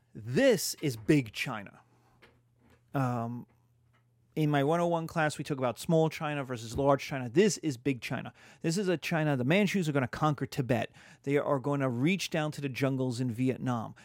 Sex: male